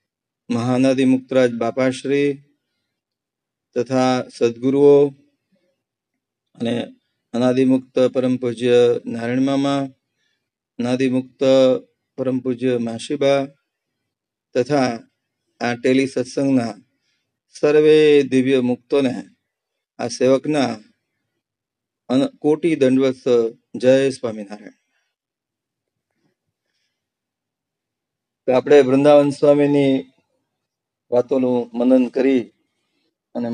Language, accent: English, Indian